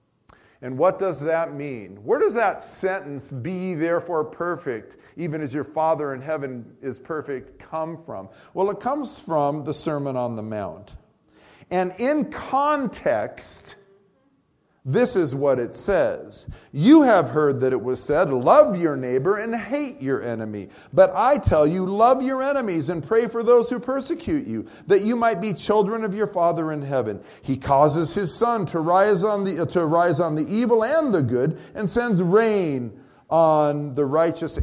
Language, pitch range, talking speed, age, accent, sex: English, 145-220 Hz, 165 wpm, 40-59, American, male